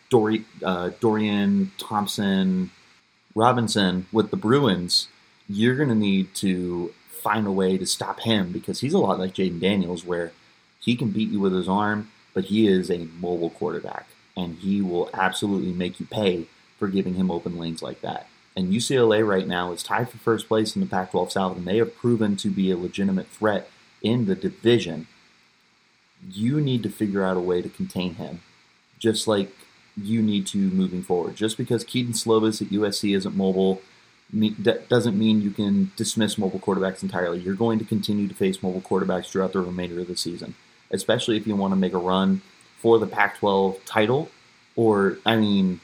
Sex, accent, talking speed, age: male, American, 180 wpm, 30-49